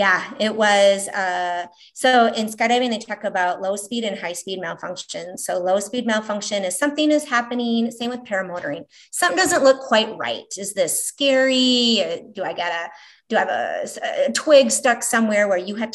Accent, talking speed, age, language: American, 190 wpm, 30-49, English